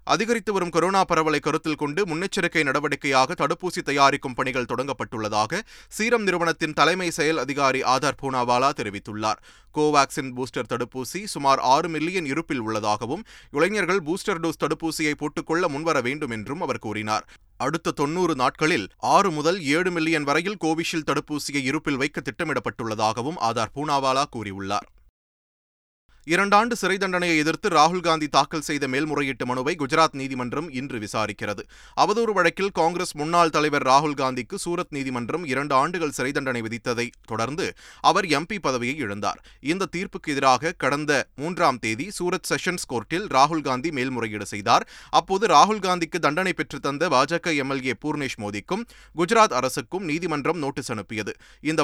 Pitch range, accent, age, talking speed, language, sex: 130-170 Hz, native, 30-49, 130 wpm, Tamil, male